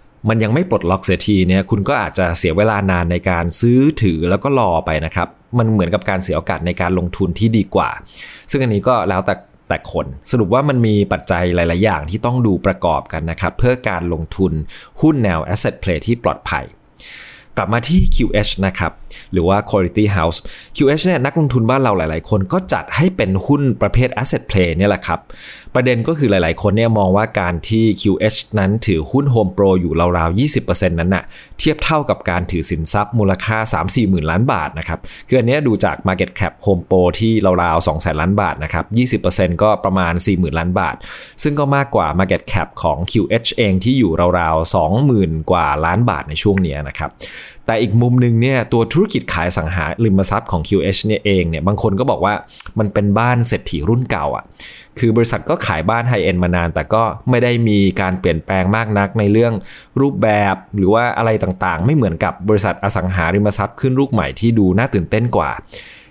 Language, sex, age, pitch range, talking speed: English, male, 20-39, 90-115 Hz, 35 wpm